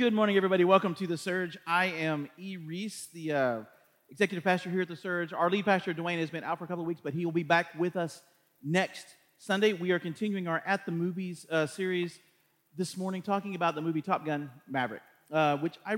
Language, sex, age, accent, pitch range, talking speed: English, male, 40-59, American, 155-195 Hz, 230 wpm